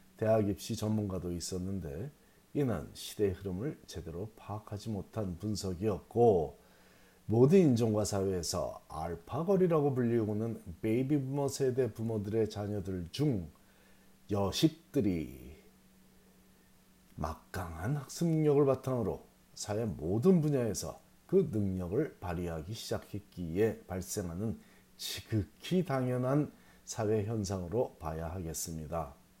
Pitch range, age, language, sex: 90-125 Hz, 40-59, Korean, male